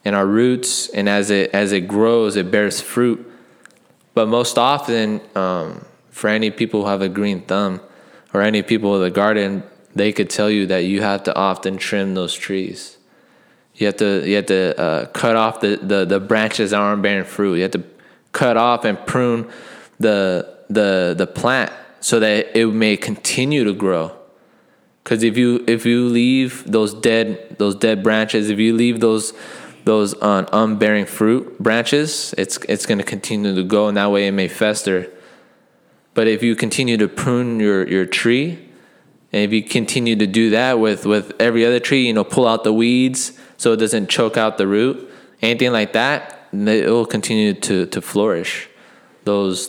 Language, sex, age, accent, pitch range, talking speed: English, male, 20-39, American, 100-115 Hz, 185 wpm